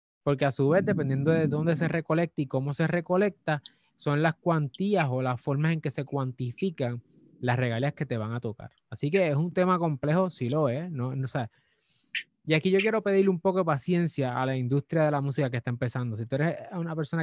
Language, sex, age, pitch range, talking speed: Spanish, male, 20-39, 140-175 Hz, 215 wpm